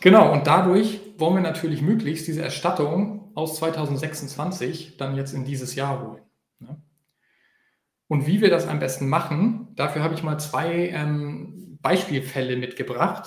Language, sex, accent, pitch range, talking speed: German, male, German, 135-170 Hz, 145 wpm